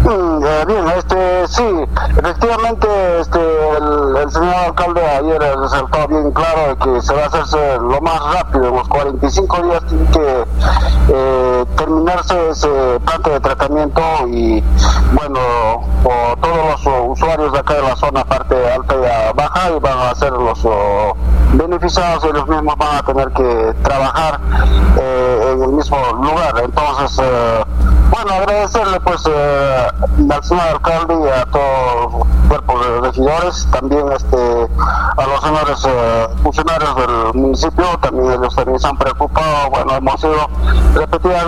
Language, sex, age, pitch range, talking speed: Spanish, male, 50-69, 120-160 Hz, 145 wpm